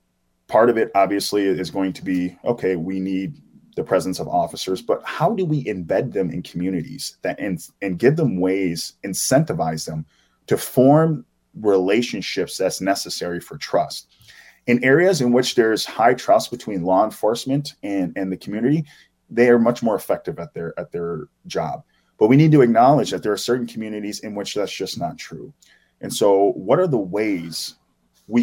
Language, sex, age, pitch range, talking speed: English, male, 20-39, 85-120 Hz, 180 wpm